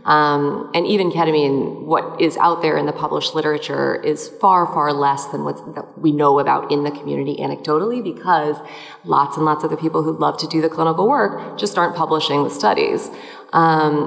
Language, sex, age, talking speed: English, female, 30-49, 190 wpm